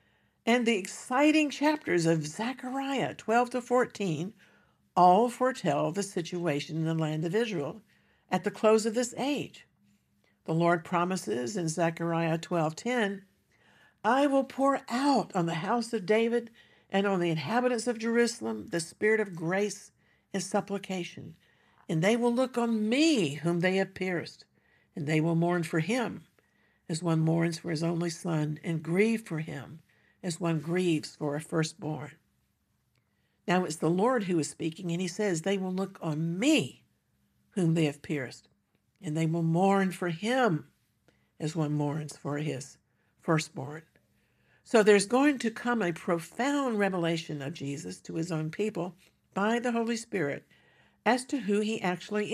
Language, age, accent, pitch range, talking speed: English, 60-79, American, 165-230 Hz, 160 wpm